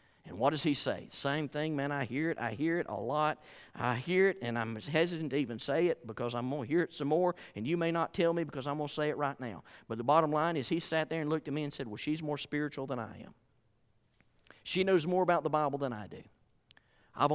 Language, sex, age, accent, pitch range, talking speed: English, male, 40-59, American, 130-185 Hz, 275 wpm